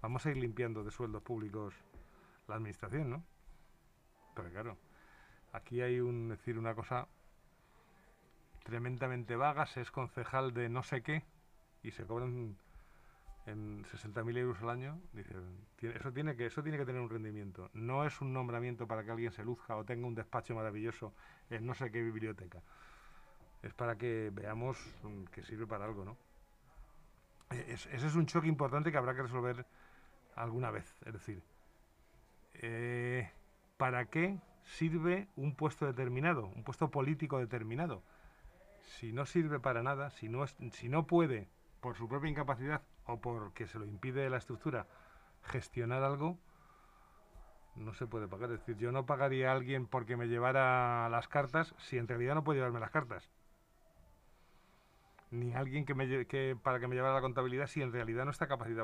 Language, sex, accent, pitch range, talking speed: Spanish, male, Spanish, 115-135 Hz, 170 wpm